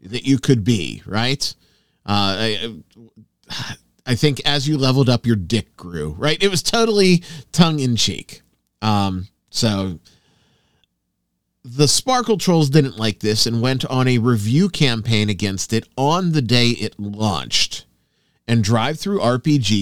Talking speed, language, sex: 135 wpm, English, male